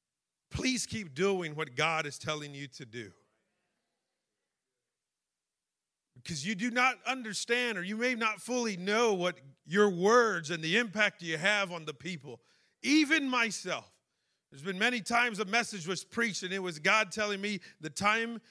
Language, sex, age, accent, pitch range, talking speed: English, male, 40-59, American, 160-220 Hz, 160 wpm